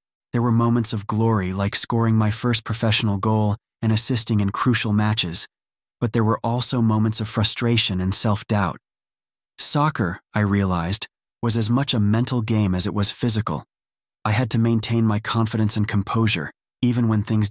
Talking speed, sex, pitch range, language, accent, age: 170 wpm, male, 100-115 Hz, English, American, 30-49